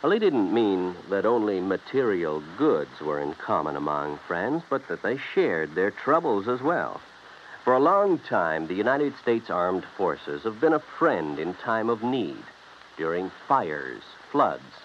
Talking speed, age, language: 165 wpm, 60-79, English